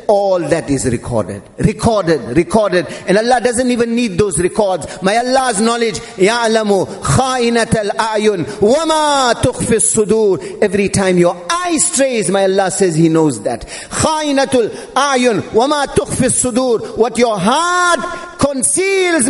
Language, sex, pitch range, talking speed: English, male, 185-245 Hz, 110 wpm